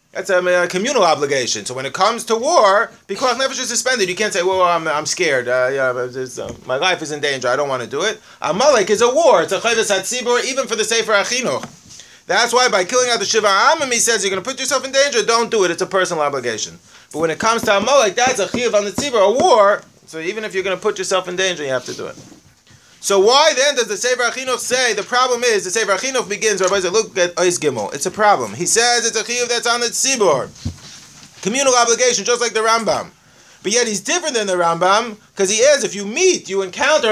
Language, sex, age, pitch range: English, male, 30-49, 180-240 Hz